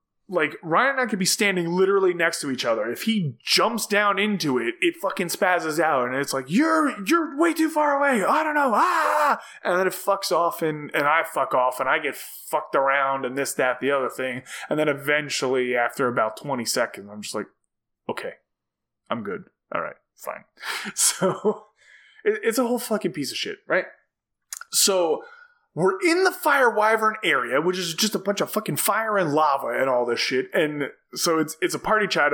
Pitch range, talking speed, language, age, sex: 135-220 Hz, 200 wpm, English, 20-39, male